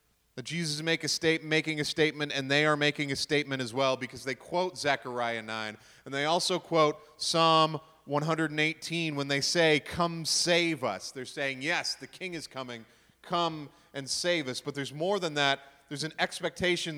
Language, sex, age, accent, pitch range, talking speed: English, male, 30-49, American, 130-160 Hz, 180 wpm